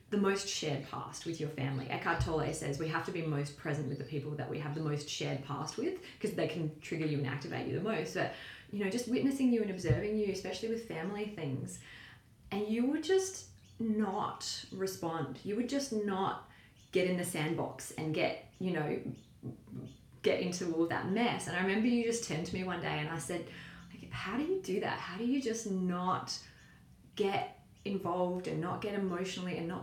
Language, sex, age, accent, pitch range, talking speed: English, female, 20-39, Australian, 150-195 Hz, 210 wpm